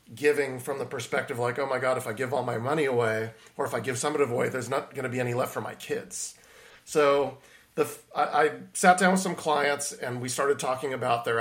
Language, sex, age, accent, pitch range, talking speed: English, male, 40-59, American, 120-150 Hz, 250 wpm